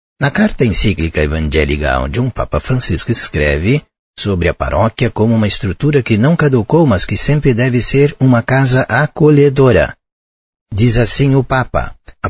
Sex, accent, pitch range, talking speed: male, Brazilian, 85-125 Hz, 150 wpm